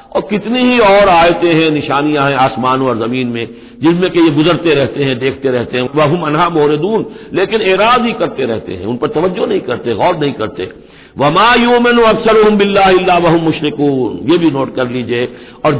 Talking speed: 190 wpm